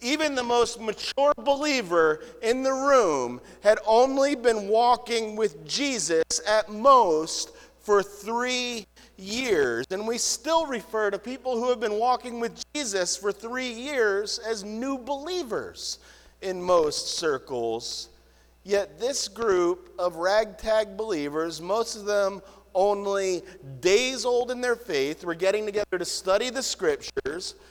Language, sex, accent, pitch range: English, male, American, 180-255 Hz